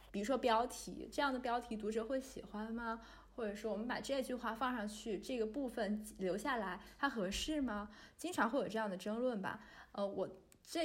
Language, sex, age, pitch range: Chinese, female, 20-39, 195-255 Hz